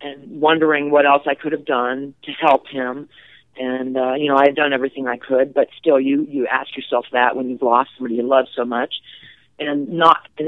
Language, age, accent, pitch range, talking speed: English, 40-59, American, 135-160 Hz, 225 wpm